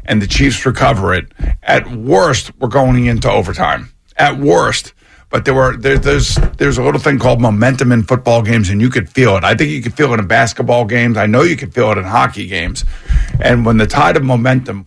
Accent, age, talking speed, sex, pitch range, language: American, 50-69, 220 wpm, male, 110-130 Hz, English